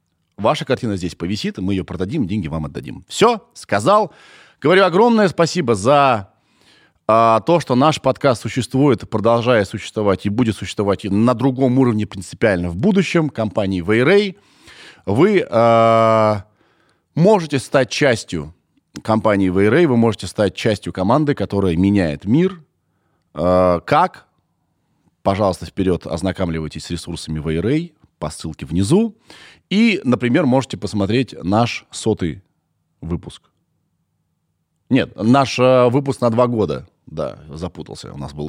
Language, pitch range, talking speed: Russian, 90-135 Hz, 125 wpm